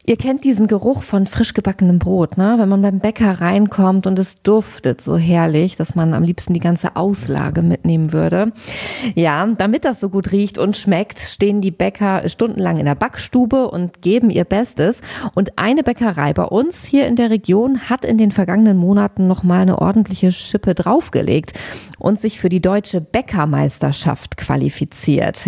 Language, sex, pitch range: German, female, 175-220 Hz